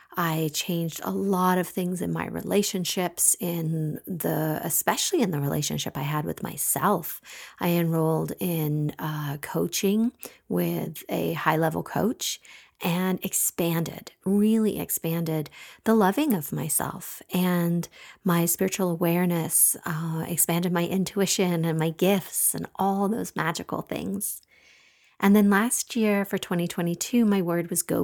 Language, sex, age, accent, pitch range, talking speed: English, female, 40-59, American, 165-205 Hz, 135 wpm